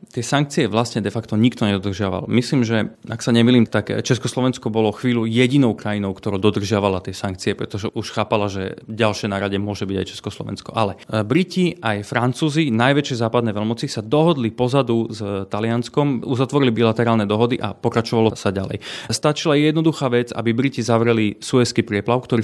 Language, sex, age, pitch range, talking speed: Slovak, male, 30-49, 110-125 Hz, 165 wpm